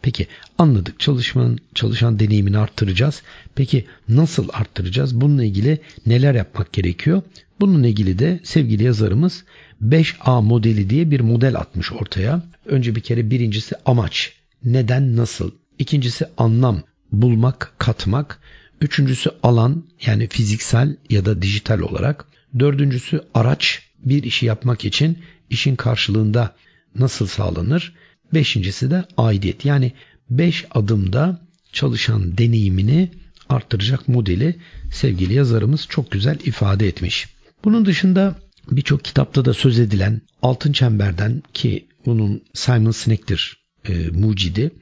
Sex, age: male, 60-79